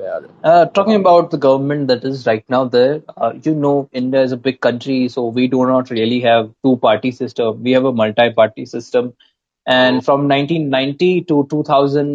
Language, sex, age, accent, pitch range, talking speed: English, male, 20-39, Indian, 125-150 Hz, 170 wpm